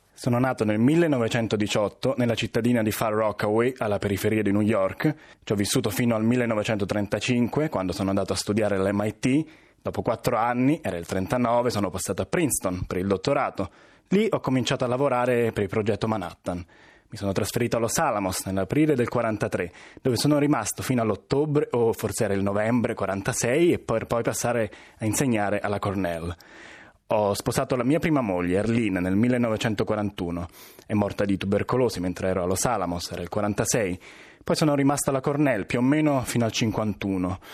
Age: 20-39